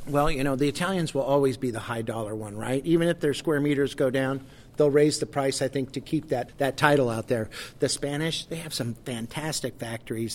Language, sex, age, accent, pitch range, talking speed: English, male, 50-69, American, 120-135 Hz, 225 wpm